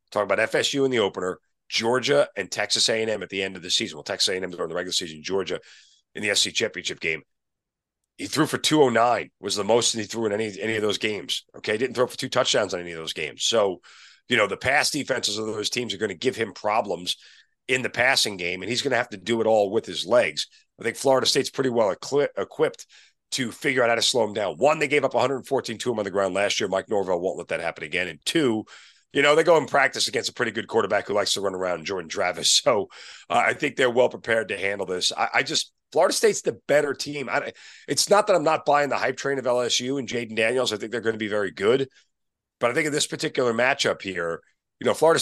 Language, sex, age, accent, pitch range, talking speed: English, male, 40-59, American, 105-140 Hz, 255 wpm